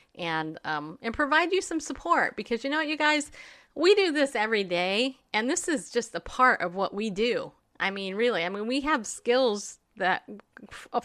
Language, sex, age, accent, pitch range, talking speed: English, female, 30-49, American, 180-245 Hz, 205 wpm